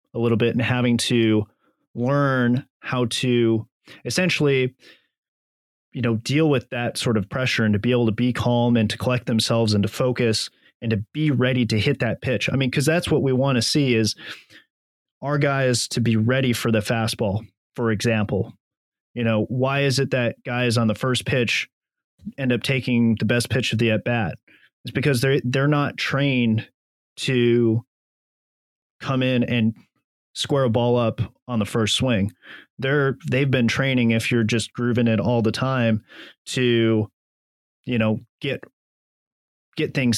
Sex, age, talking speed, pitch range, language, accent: male, 30-49, 175 wpm, 110-130 Hz, English, American